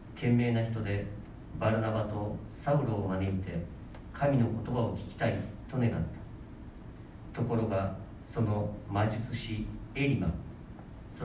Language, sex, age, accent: Japanese, male, 40-59, native